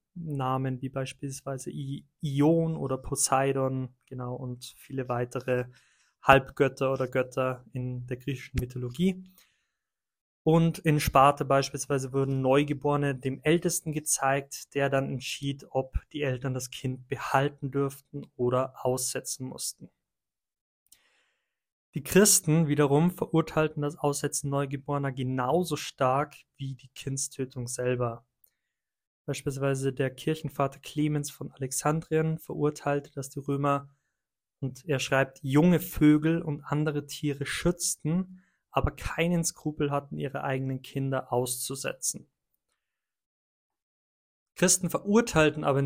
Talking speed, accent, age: 110 wpm, German, 20-39